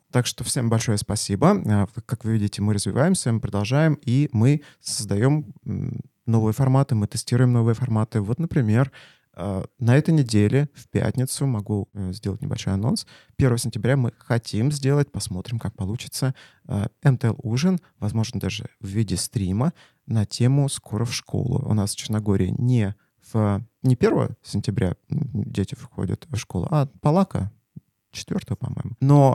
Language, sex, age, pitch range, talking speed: Russian, male, 30-49, 105-135 Hz, 140 wpm